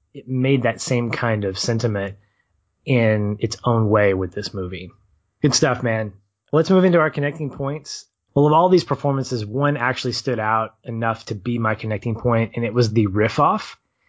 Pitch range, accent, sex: 110-140 Hz, American, male